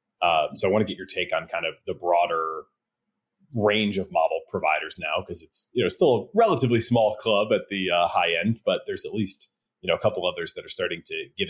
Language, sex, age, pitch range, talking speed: English, male, 30-49, 105-170 Hz, 240 wpm